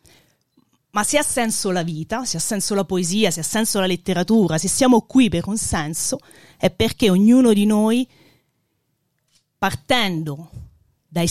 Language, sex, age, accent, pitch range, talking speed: Italian, female, 30-49, native, 150-205 Hz, 155 wpm